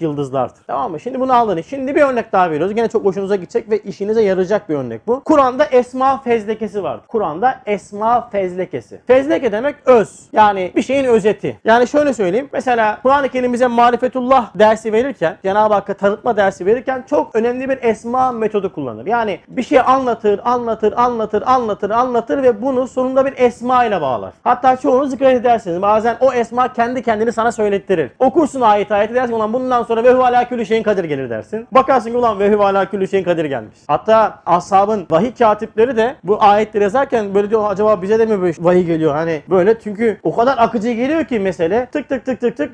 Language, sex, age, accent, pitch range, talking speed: Turkish, male, 40-59, native, 185-245 Hz, 185 wpm